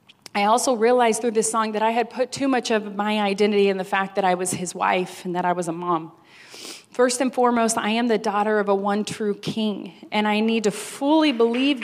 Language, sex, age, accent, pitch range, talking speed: English, female, 30-49, American, 195-225 Hz, 240 wpm